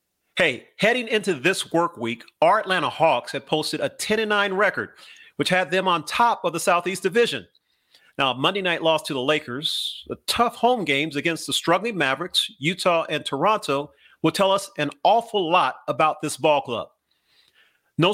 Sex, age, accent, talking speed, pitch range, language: male, 40-59, American, 170 wpm, 145-190 Hz, English